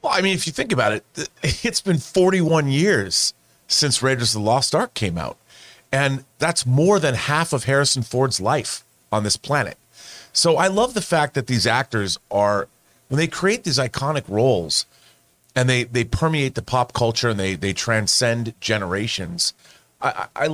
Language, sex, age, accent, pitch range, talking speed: English, male, 40-59, American, 115-155 Hz, 180 wpm